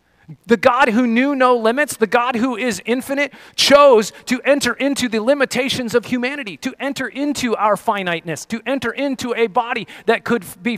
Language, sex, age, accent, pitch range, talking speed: English, male, 30-49, American, 185-250 Hz, 180 wpm